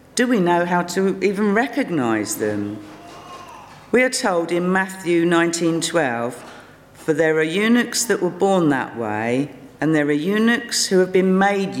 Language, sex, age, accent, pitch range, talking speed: English, female, 50-69, British, 135-190 Hz, 160 wpm